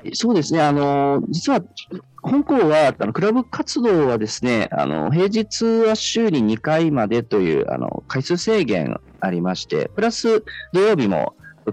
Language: Japanese